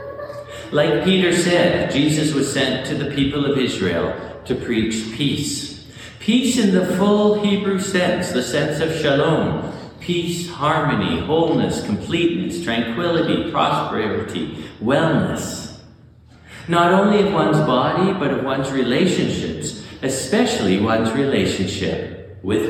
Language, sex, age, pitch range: English, male, 50-69, 110-170 Hz